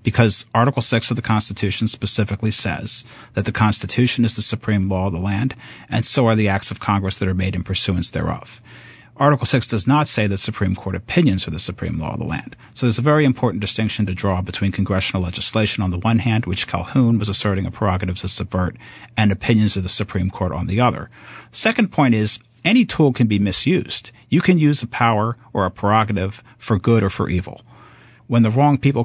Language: English